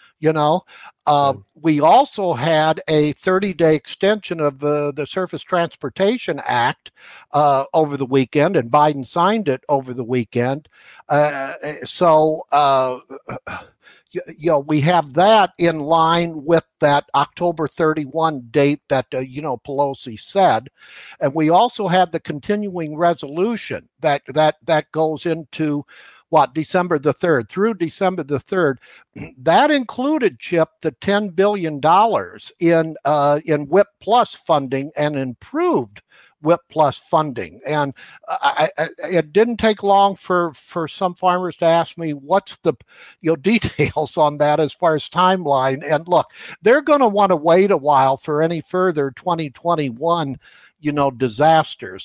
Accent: American